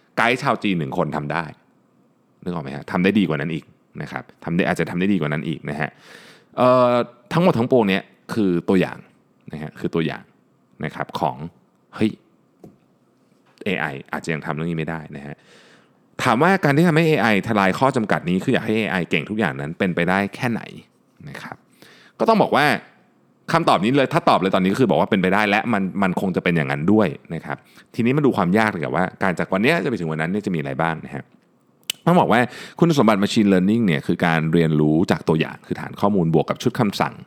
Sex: male